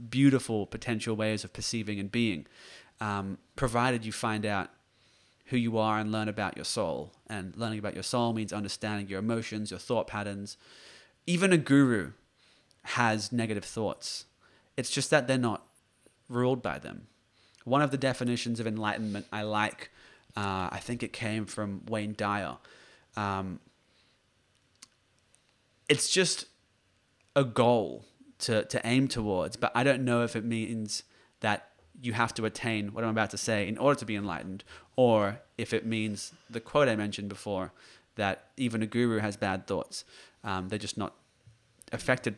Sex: male